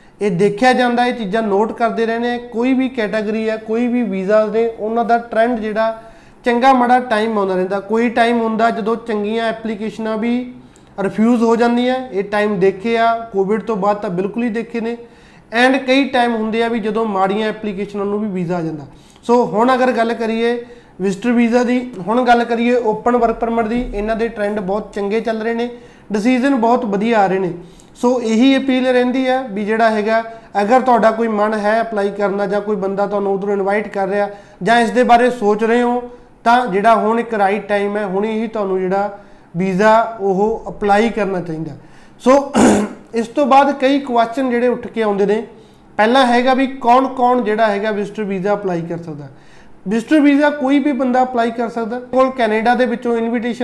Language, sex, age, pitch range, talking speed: Punjabi, male, 30-49, 205-240 Hz, 175 wpm